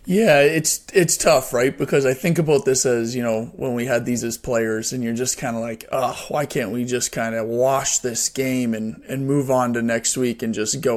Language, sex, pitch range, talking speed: English, male, 115-140 Hz, 245 wpm